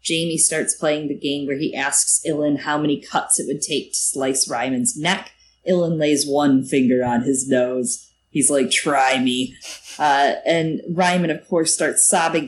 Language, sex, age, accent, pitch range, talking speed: English, female, 30-49, American, 135-185 Hz, 180 wpm